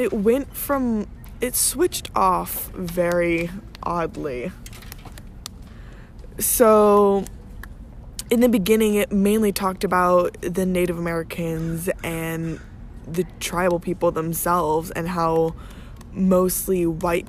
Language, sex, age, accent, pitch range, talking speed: English, female, 20-39, American, 165-185 Hz, 95 wpm